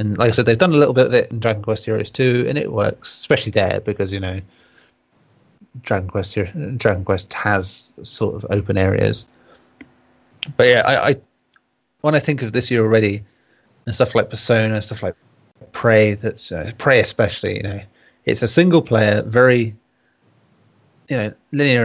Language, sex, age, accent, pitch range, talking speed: English, male, 30-49, British, 105-125 Hz, 180 wpm